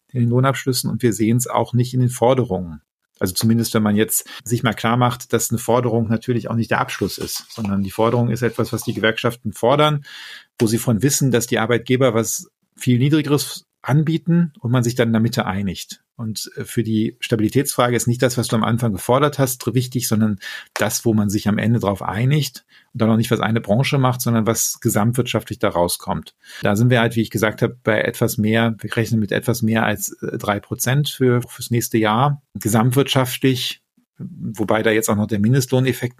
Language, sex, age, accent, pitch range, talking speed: German, male, 40-59, German, 110-125 Hz, 205 wpm